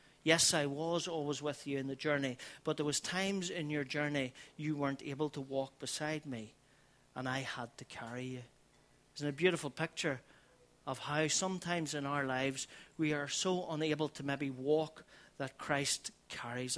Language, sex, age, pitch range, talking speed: English, male, 40-59, 130-155 Hz, 175 wpm